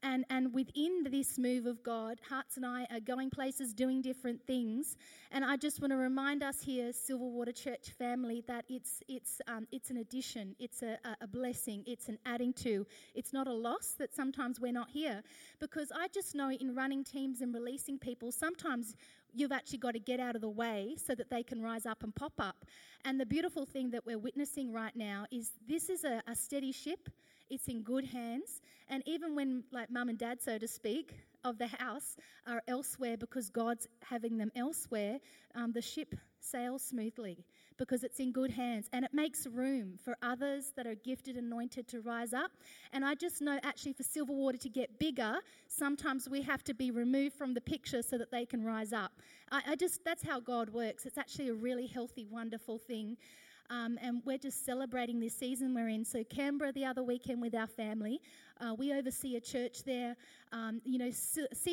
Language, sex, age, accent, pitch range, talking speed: English, female, 30-49, Australian, 235-270 Hz, 205 wpm